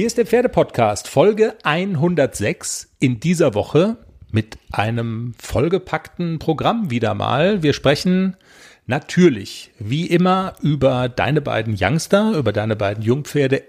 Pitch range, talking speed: 120-170 Hz, 125 wpm